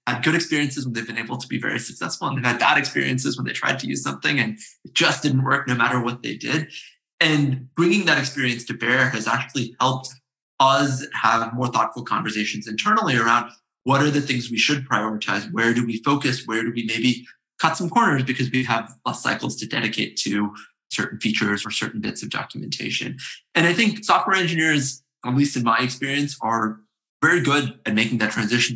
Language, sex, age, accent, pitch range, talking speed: English, male, 20-39, American, 115-135 Hz, 200 wpm